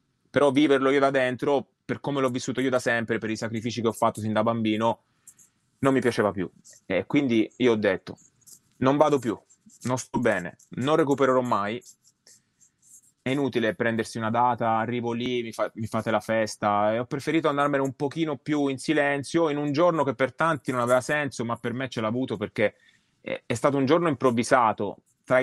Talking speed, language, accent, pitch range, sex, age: 195 wpm, Italian, native, 110-140 Hz, male, 20-39